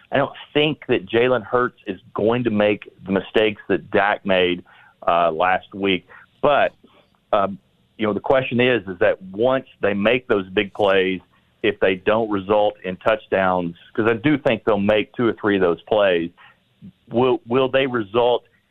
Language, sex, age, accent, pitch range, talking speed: English, male, 40-59, American, 100-120 Hz, 175 wpm